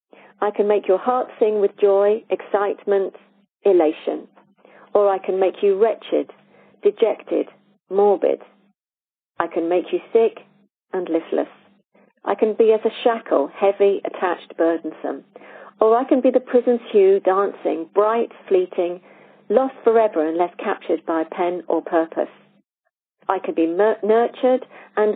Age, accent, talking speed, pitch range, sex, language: 40-59, British, 140 wpm, 175-225 Hz, female, English